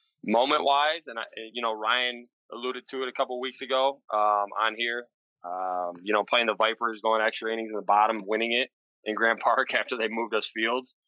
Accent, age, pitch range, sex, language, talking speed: American, 20-39, 100-120 Hz, male, English, 210 wpm